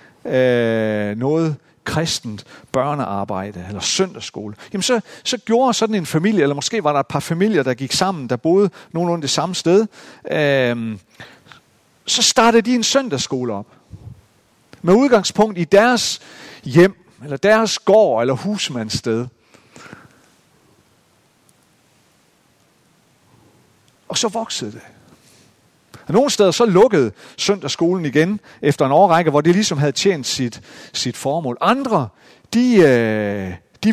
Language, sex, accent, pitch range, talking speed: Danish, male, native, 125-205 Hz, 120 wpm